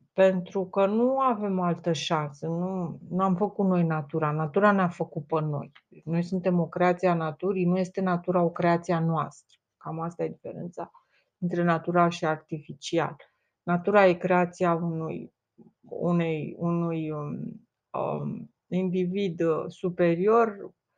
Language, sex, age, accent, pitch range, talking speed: Romanian, female, 30-49, native, 170-205 Hz, 135 wpm